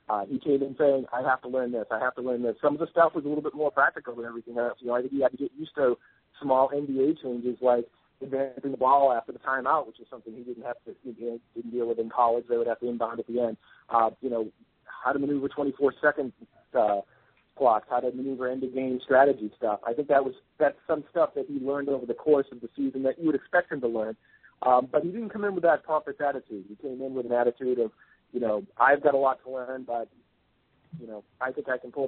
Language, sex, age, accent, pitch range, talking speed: English, male, 40-59, American, 120-150 Hz, 270 wpm